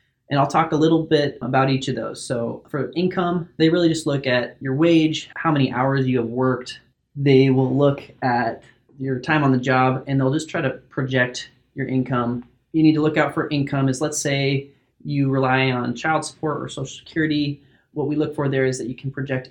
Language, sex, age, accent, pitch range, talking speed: English, male, 30-49, American, 125-145 Hz, 220 wpm